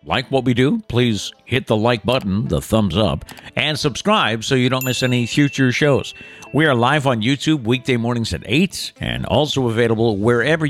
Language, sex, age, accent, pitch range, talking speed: English, male, 60-79, American, 100-135 Hz, 190 wpm